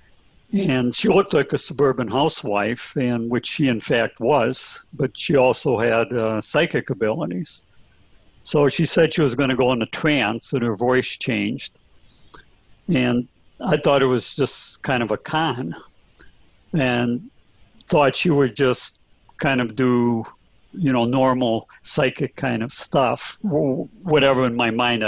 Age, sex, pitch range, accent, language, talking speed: 60-79, male, 120-150 Hz, American, English, 150 wpm